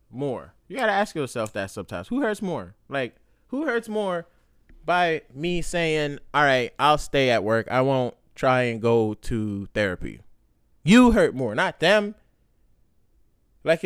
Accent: American